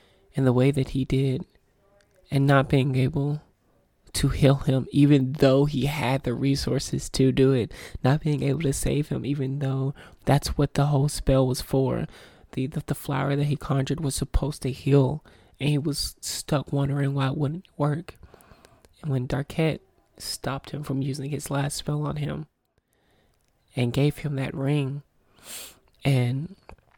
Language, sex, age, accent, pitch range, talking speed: English, male, 20-39, American, 135-150 Hz, 165 wpm